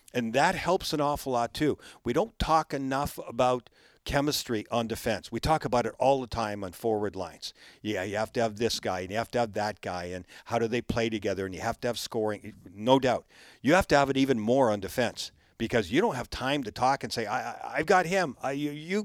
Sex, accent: male, American